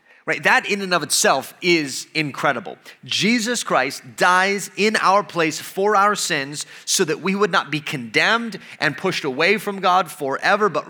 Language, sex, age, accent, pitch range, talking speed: English, male, 30-49, American, 155-215 Hz, 170 wpm